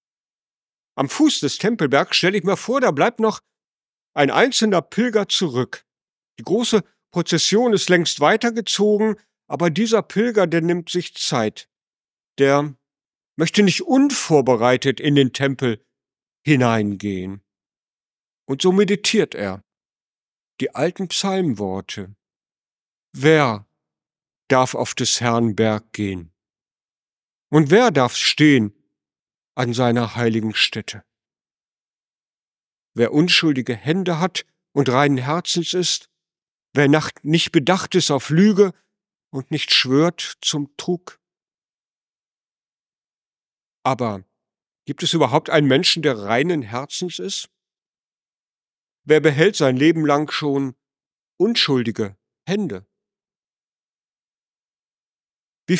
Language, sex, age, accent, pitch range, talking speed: German, male, 50-69, German, 125-185 Hz, 105 wpm